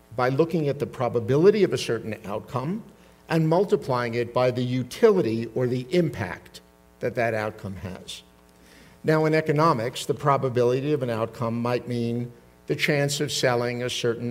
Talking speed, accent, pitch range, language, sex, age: 160 wpm, American, 105-145 Hz, English, male, 50-69